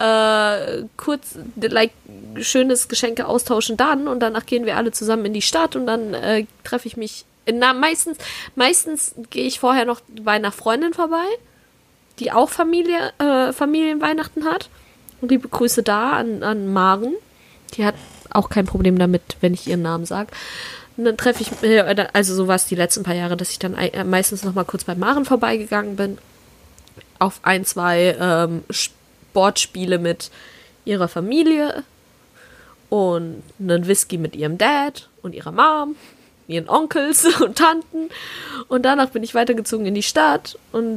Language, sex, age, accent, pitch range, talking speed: German, female, 20-39, German, 185-275 Hz, 165 wpm